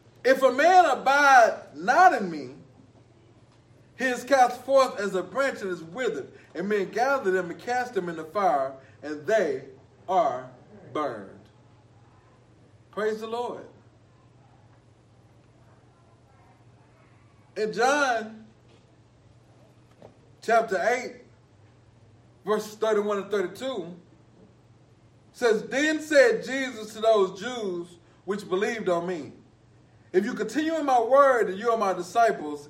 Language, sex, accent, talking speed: English, male, American, 115 wpm